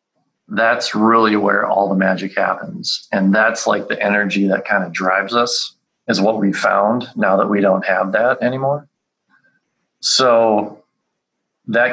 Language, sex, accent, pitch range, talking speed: English, male, American, 100-115 Hz, 150 wpm